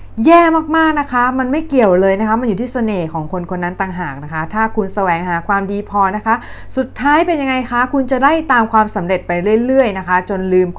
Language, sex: Thai, female